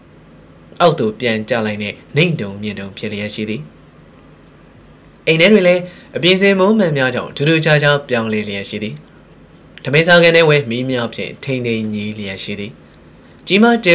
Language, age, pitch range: English, 20-39, 105-155 Hz